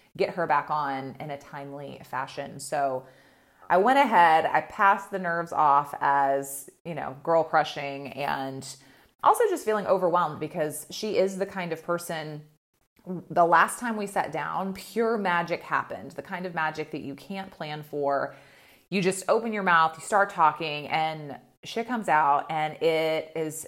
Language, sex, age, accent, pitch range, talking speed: English, female, 30-49, American, 150-185 Hz, 170 wpm